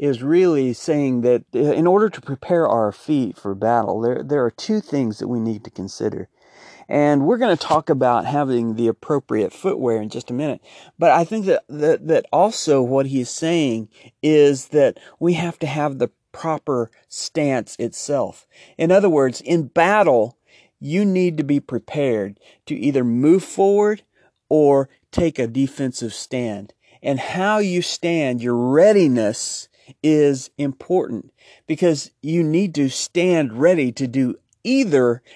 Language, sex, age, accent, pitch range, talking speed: English, male, 40-59, American, 130-170 Hz, 160 wpm